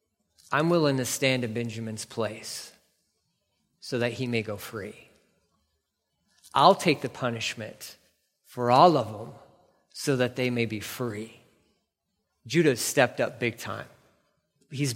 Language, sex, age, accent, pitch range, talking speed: English, male, 30-49, American, 125-175 Hz, 130 wpm